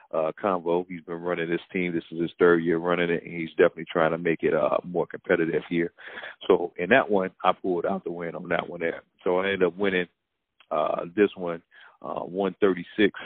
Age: 40-59